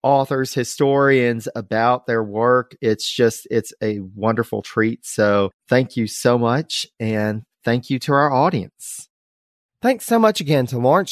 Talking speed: 150 wpm